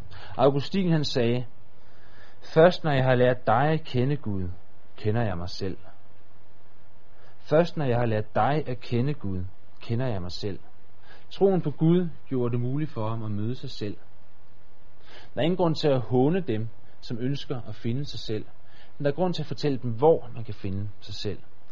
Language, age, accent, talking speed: Danish, 30-49, native, 190 wpm